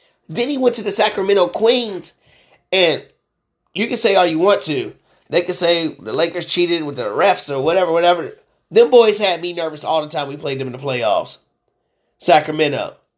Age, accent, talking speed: 30-49, American, 190 wpm